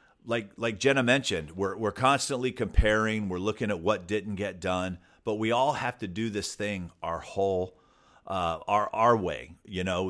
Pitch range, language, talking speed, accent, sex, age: 80-100 Hz, English, 185 wpm, American, male, 40-59